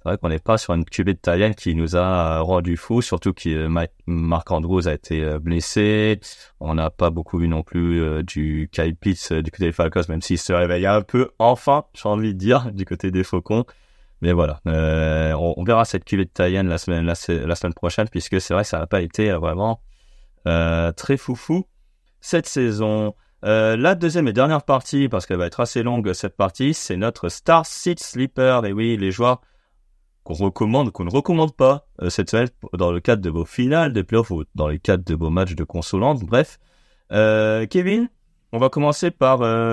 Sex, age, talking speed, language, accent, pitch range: male, 30-49, 205 wpm, French, French, 85-130 Hz